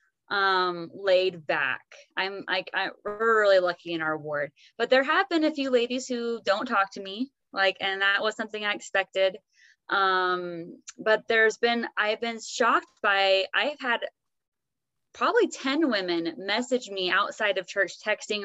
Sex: female